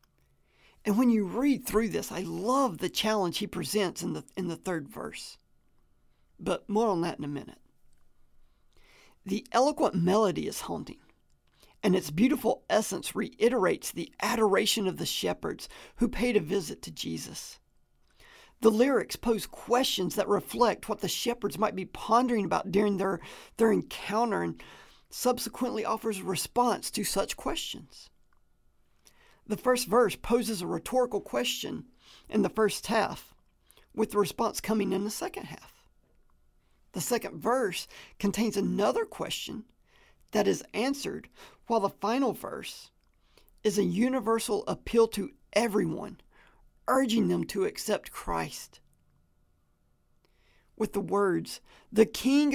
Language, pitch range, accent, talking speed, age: English, 195-240 Hz, American, 135 wpm, 40-59